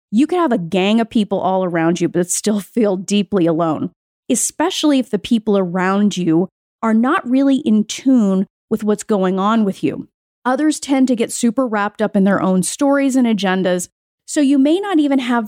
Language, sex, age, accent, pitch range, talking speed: English, female, 30-49, American, 205-290 Hz, 200 wpm